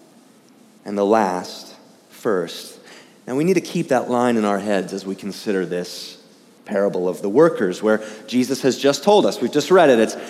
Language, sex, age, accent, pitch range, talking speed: English, male, 30-49, American, 160-215 Hz, 190 wpm